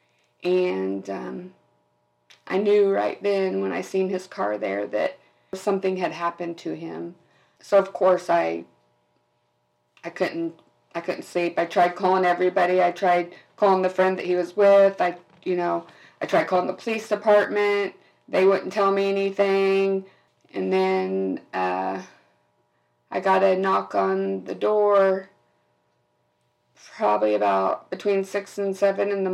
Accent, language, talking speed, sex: American, English, 145 wpm, female